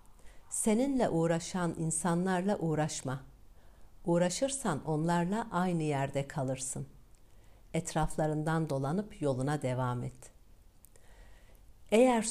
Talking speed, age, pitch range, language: 75 wpm, 60-79, 130-175 Hz, Turkish